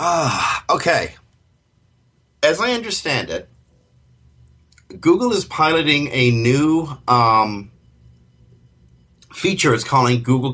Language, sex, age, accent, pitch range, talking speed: English, male, 50-69, American, 115-140 Hz, 90 wpm